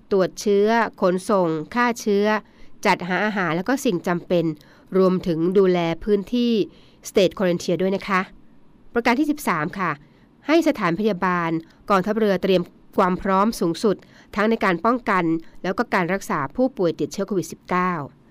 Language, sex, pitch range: Thai, female, 175-220 Hz